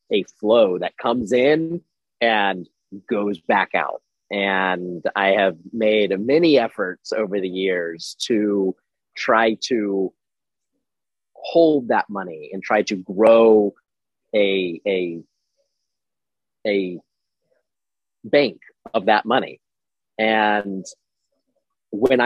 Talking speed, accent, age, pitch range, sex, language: 95 wpm, American, 30-49, 100-125 Hz, male, English